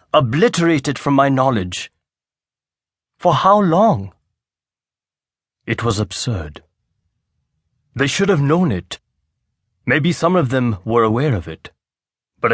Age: 30-49